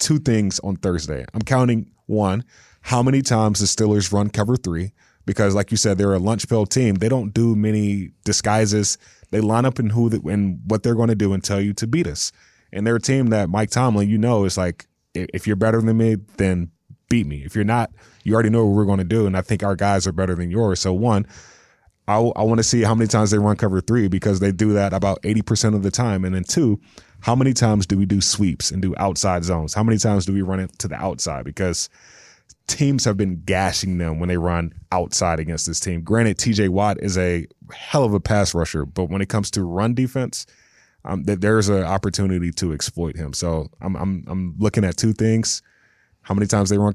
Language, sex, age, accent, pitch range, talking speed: English, male, 20-39, American, 90-110 Hz, 240 wpm